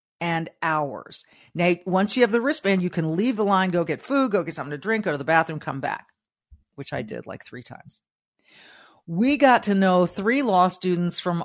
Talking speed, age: 215 wpm, 50-69